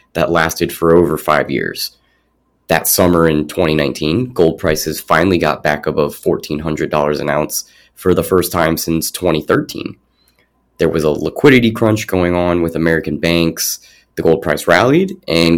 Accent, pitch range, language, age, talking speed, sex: American, 75-95 Hz, English, 30-49, 155 wpm, male